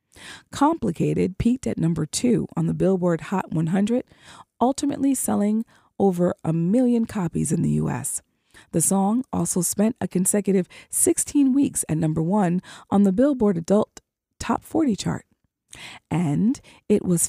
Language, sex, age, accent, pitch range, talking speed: English, female, 40-59, American, 175-240 Hz, 140 wpm